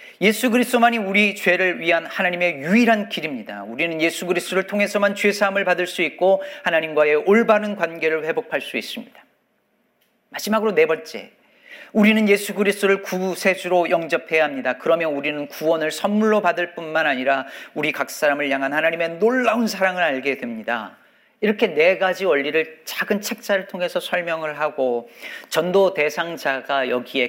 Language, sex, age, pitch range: Korean, male, 40-59, 150-215 Hz